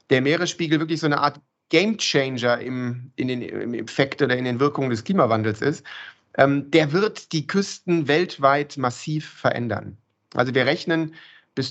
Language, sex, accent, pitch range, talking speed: German, male, German, 125-175 Hz, 155 wpm